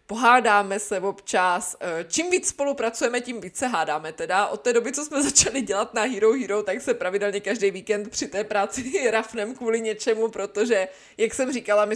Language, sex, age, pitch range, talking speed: Czech, female, 20-39, 190-235 Hz, 185 wpm